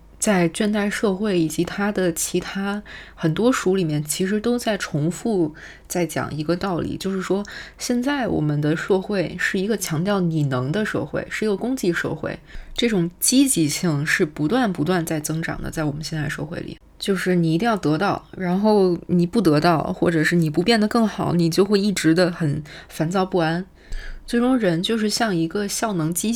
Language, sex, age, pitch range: Chinese, female, 20-39, 160-205 Hz